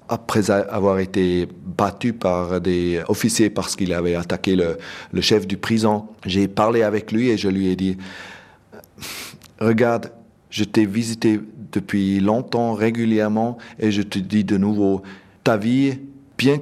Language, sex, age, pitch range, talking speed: French, male, 40-59, 100-120 Hz, 150 wpm